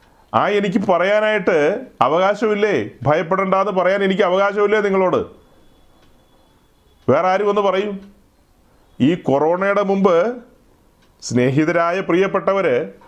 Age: 40-59